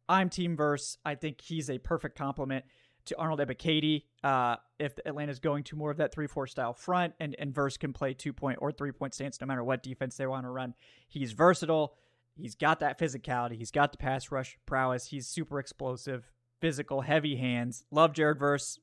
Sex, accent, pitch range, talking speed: male, American, 130-170 Hz, 205 wpm